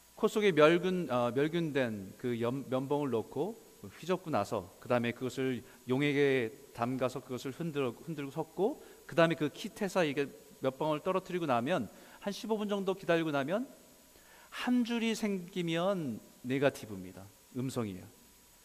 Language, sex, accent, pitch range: Korean, male, native, 130-200 Hz